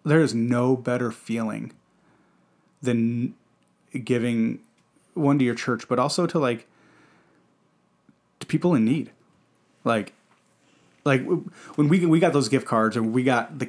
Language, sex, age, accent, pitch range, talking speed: English, male, 30-49, American, 115-135 Hz, 135 wpm